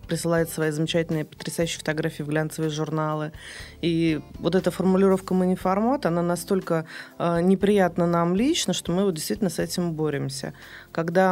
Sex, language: female, Russian